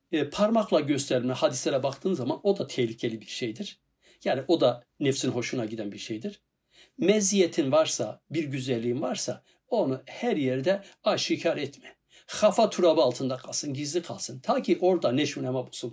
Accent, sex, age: native, male, 60-79